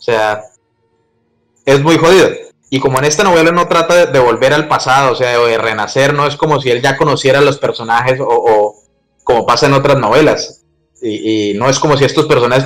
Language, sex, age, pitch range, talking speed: Spanish, male, 20-39, 110-150 Hz, 220 wpm